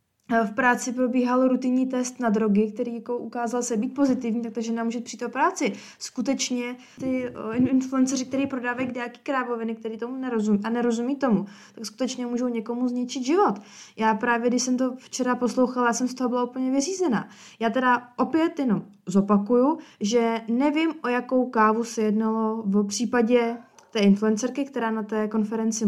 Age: 20-39